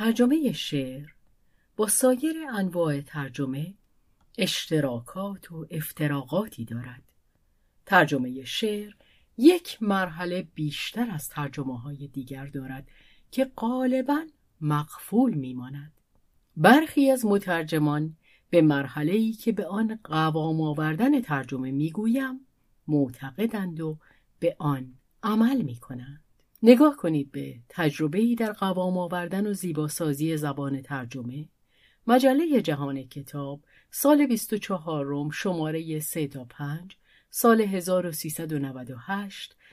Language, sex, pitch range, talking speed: Persian, female, 145-225 Hz, 100 wpm